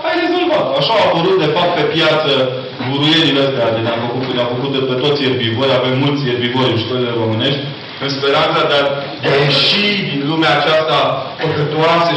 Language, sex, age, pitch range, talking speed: Romanian, male, 30-49, 125-155 Hz, 180 wpm